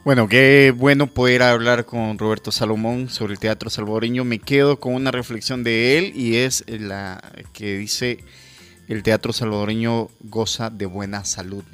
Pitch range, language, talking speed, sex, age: 100-120 Hz, Spanish, 160 wpm, male, 20-39